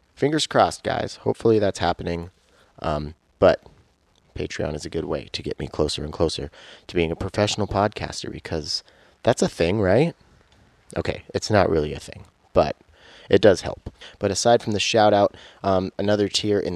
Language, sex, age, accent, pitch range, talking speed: English, male, 30-49, American, 85-115 Hz, 170 wpm